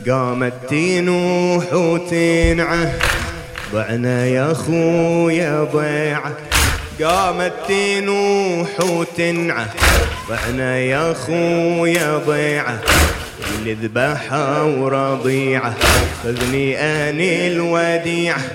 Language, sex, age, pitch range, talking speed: English, male, 30-49, 165-225 Hz, 70 wpm